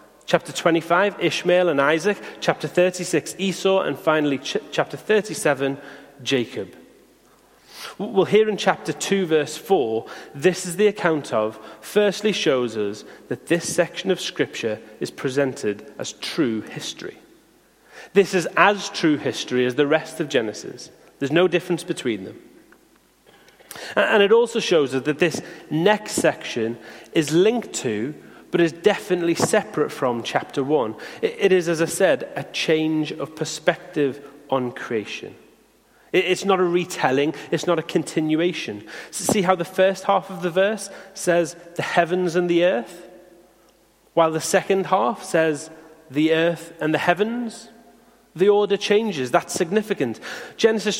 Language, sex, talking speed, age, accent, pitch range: English, male, 140 wpm, 30-49, British, 155-195 Hz